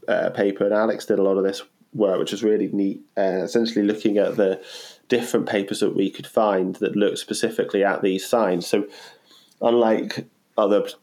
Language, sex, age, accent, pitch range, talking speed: English, male, 20-39, British, 90-100 Hz, 185 wpm